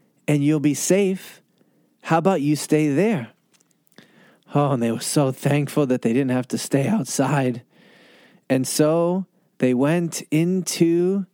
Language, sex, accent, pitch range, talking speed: English, male, American, 130-210 Hz, 145 wpm